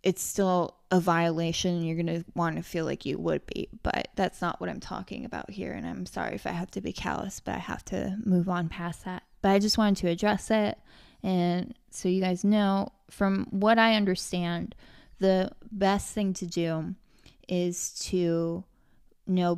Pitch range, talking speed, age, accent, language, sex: 170-195 Hz, 195 wpm, 20-39, American, English, female